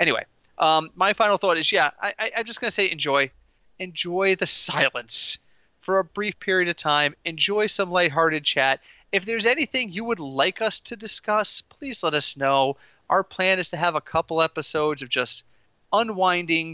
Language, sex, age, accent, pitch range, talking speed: English, male, 30-49, American, 140-190 Hz, 185 wpm